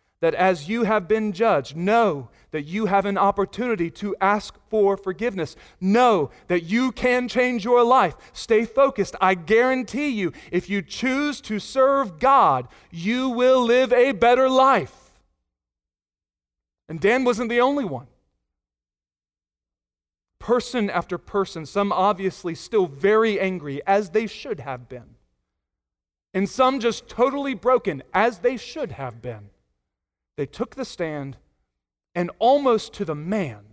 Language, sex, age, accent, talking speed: English, male, 40-59, American, 140 wpm